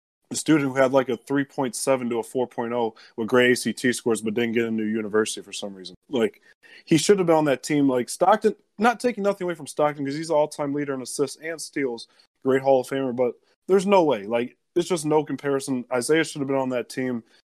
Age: 20-39